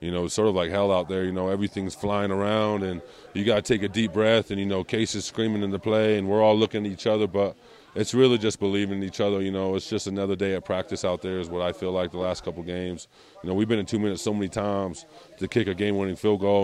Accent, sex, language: American, male, English